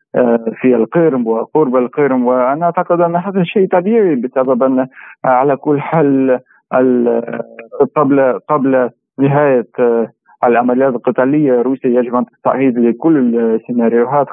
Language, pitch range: Arabic, 125-155 Hz